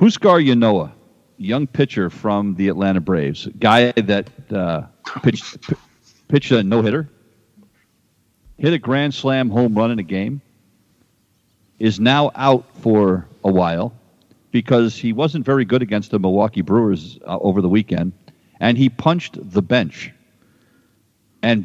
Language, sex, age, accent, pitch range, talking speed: English, male, 50-69, American, 100-135 Hz, 135 wpm